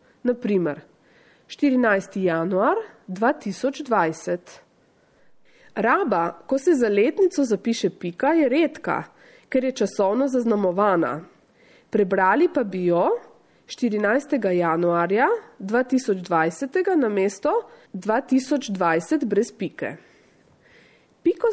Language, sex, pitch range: Italian, female, 195-285 Hz